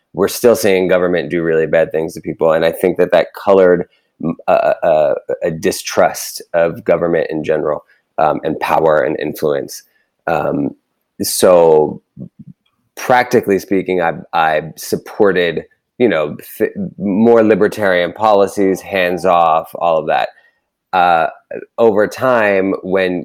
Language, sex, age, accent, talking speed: English, male, 30-49, American, 130 wpm